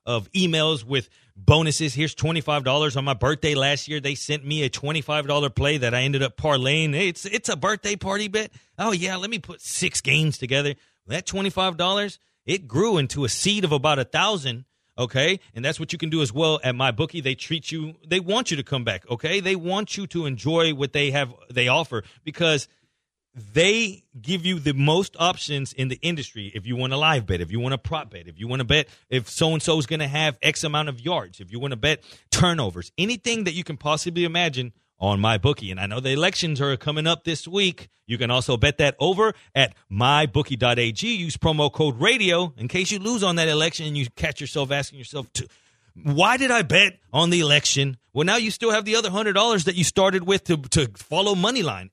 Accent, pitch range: American, 130-180 Hz